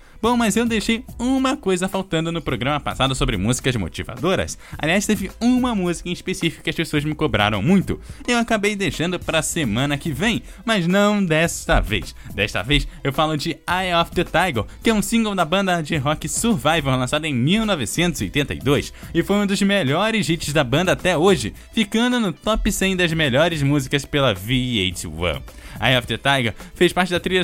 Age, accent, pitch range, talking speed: 10-29, Brazilian, 140-195 Hz, 185 wpm